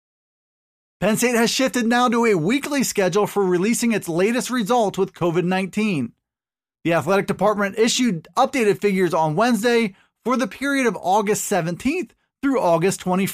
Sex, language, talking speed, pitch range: male, English, 145 wpm, 180-235 Hz